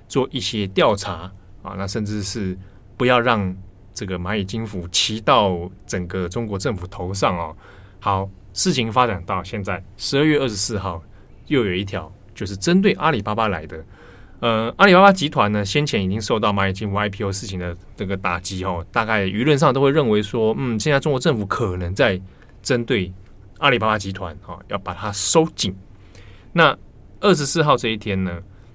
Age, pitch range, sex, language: 20-39, 95-120 Hz, male, Chinese